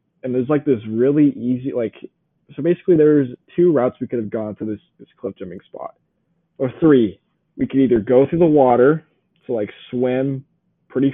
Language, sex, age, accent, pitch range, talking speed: English, male, 20-39, American, 115-155 Hz, 190 wpm